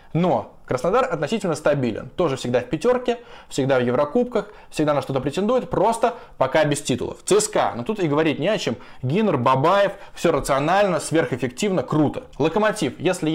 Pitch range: 145-210 Hz